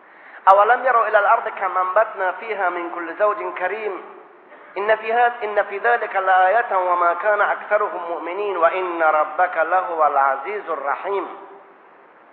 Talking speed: 140 wpm